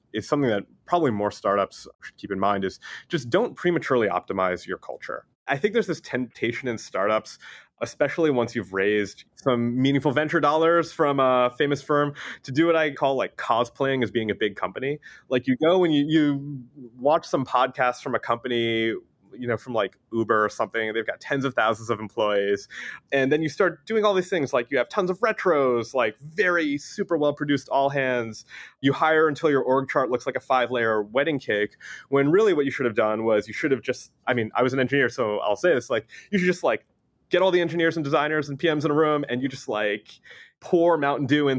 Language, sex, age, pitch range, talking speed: English, male, 30-49, 115-150 Hz, 215 wpm